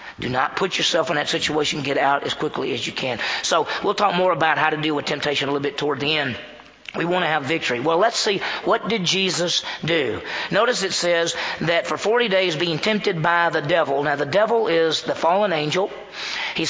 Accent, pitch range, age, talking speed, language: American, 150-190 Hz, 40-59, 225 wpm, English